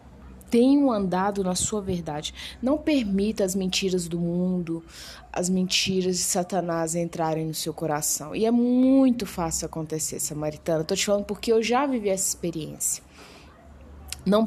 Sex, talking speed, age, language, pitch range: female, 150 wpm, 20-39, Portuguese, 165-230 Hz